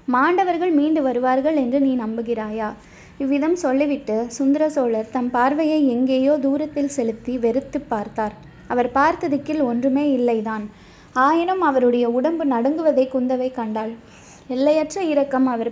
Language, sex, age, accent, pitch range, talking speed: Tamil, female, 20-39, native, 240-290 Hz, 110 wpm